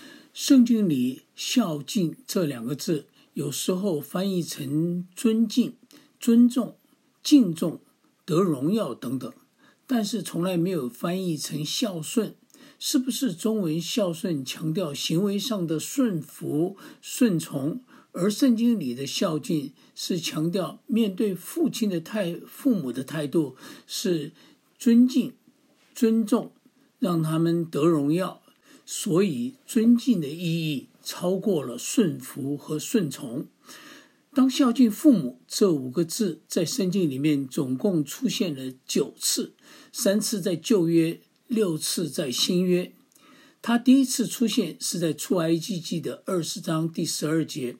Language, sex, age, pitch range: English, male, 50-69, 160-245 Hz